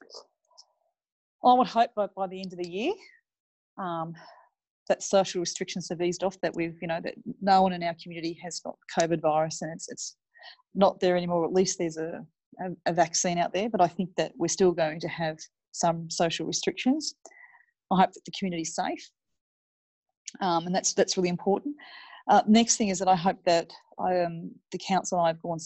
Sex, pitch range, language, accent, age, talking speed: female, 170-195 Hz, English, Australian, 30-49, 200 wpm